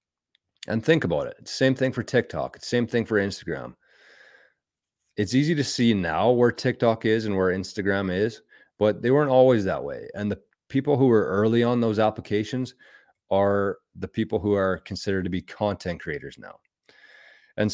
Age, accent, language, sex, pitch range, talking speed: 30-49, American, English, male, 95-120 Hz, 175 wpm